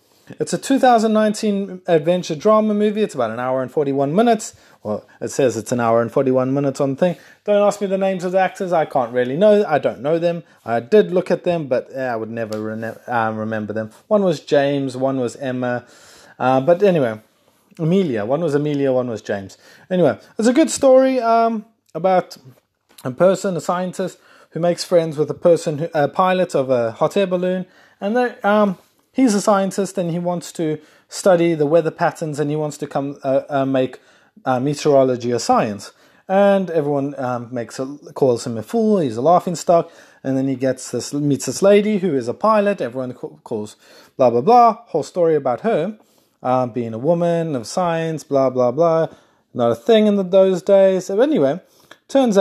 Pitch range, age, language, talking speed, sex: 130-195 Hz, 20-39, English, 195 wpm, male